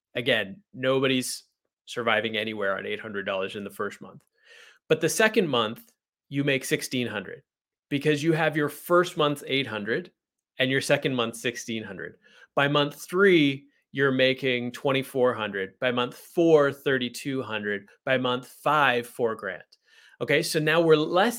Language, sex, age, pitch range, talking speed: English, male, 30-49, 125-165 Hz, 135 wpm